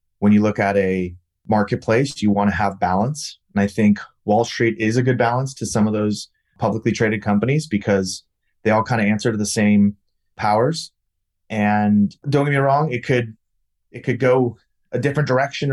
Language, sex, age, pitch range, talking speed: English, male, 30-49, 100-120 Hz, 190 wpm